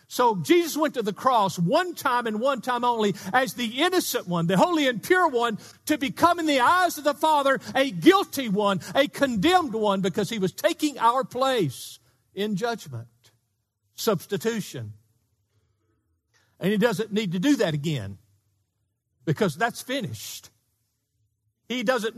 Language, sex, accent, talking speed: English, male, American, 155 wpm